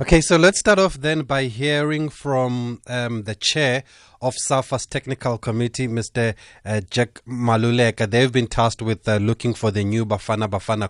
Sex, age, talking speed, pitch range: male, 30-49, 170 wpm, 100-120 Hz